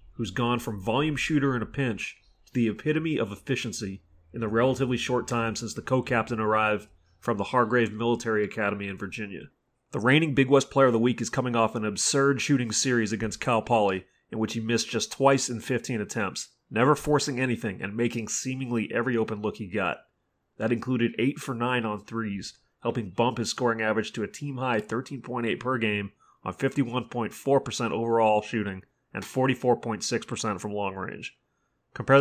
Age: 30-49